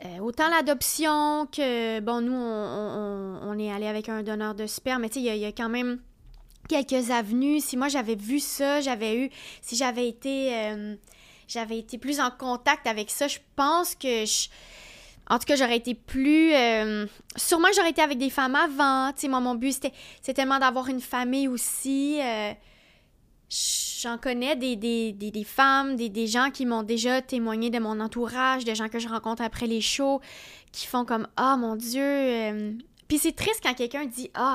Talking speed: 205 wpm